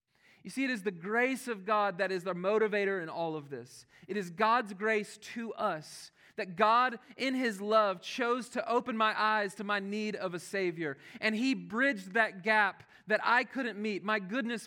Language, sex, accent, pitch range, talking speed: English, male, American, 185-225 Hz, 200 wpm